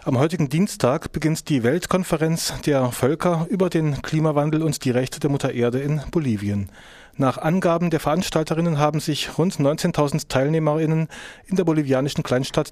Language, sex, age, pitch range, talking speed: German, male, 30-49, 130-155 Hz, 150 wpm